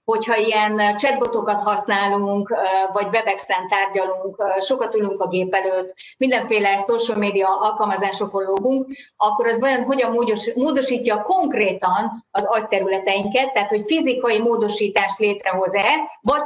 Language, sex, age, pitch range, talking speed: Hungarian, female, 30-49, 200-250 Hz, 110 wpm